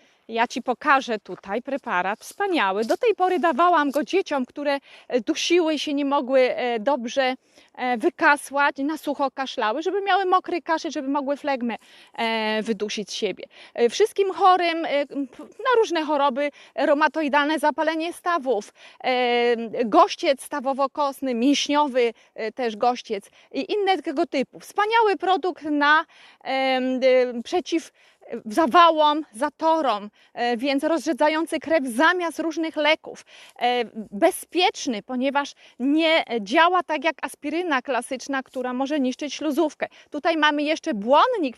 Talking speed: 110 wpm